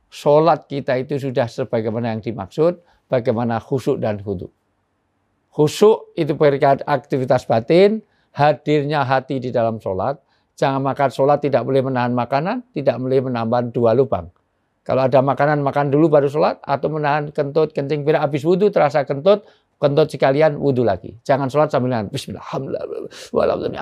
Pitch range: 115-160 Hz